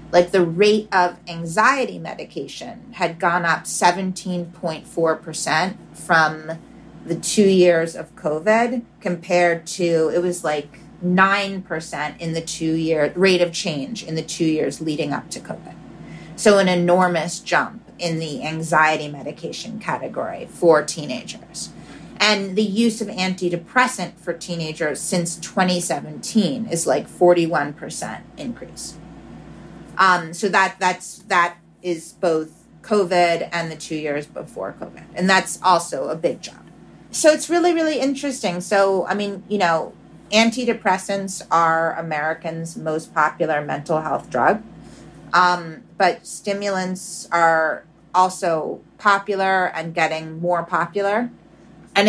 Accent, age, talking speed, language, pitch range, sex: American, 30-49, 125 wpm, English, 160-195 Hz, female